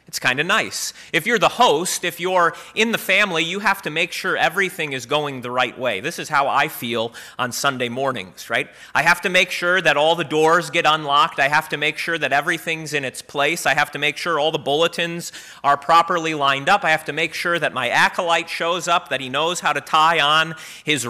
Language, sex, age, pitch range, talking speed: English, male, 30-49, 140-180 Hz, 235 wpm